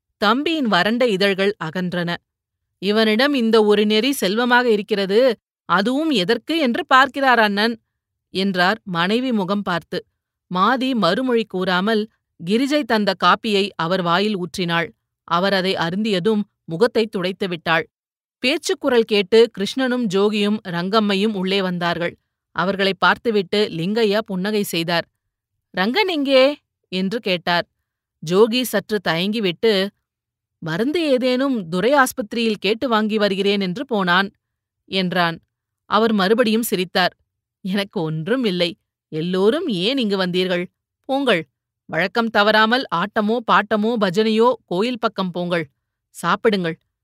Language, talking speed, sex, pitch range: Tamil, 105 wpm, female, 170-225 Hz